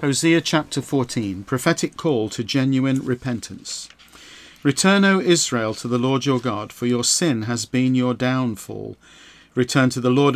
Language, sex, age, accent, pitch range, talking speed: English, male, 50-69, British, 120-145 Hz, 155 wpm